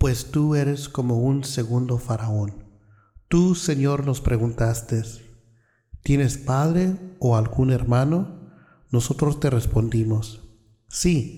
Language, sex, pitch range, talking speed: Spanish, male, 120-150 Hz, 105 wpm